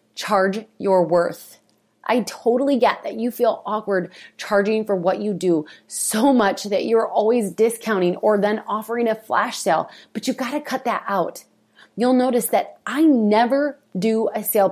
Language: English